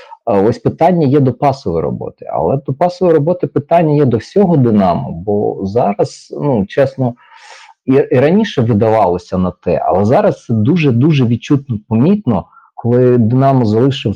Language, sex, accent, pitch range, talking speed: Ukrainian, male, native, 115-165 Hz, 145 wpm